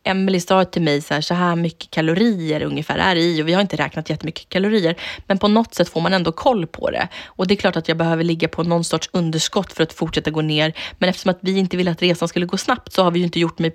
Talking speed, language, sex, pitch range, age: 285 wpm, Swedish, female, 160-195 Hz, 20-39